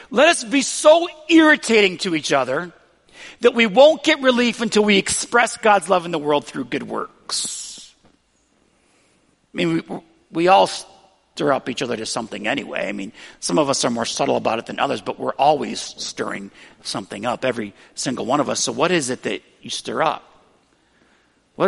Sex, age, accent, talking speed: male, 50-69, American, 190 wpm